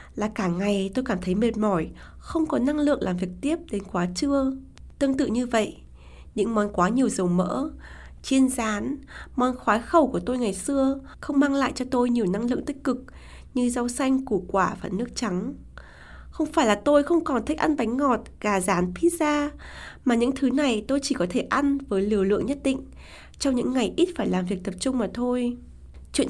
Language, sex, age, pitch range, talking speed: Vietnamese, female, 20-39, 205-280 Hz, 215 wpm